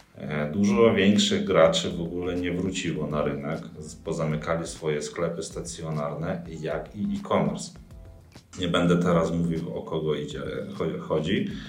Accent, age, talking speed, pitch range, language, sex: native, 40-59, 125 wpm, 80-105 Hz, Polish, male